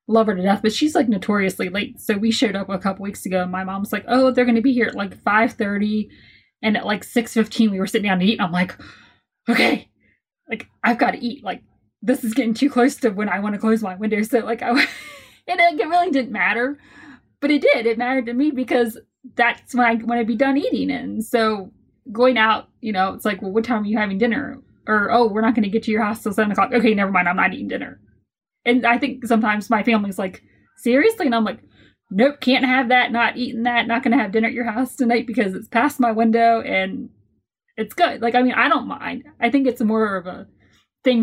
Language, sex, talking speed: English, female, 250 wpm